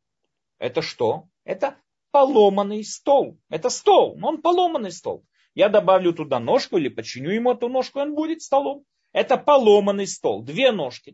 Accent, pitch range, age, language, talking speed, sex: native, 170-255 Hz, 30-49, Russian, 150 wpm, male